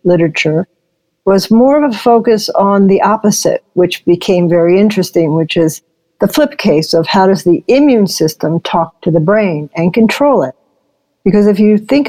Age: 60-79